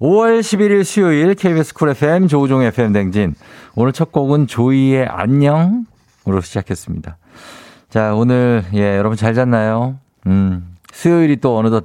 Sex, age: male, 50-69